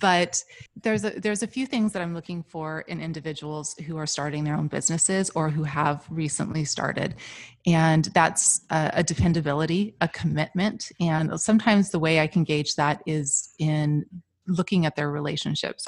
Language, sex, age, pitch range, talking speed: English, female, 30-49, 155-170 Hz, 170 wpm